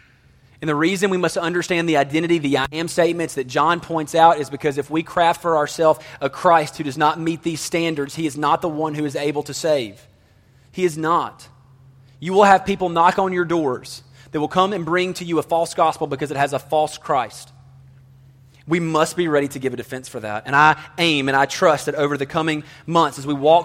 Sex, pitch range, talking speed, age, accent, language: male, 140-170 Hz, 235 wpm, 30-49, American, English